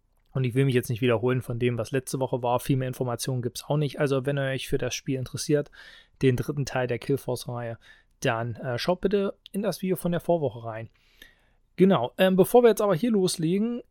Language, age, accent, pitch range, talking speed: German, 30-49, German, 130-180 Hz, 225 wpm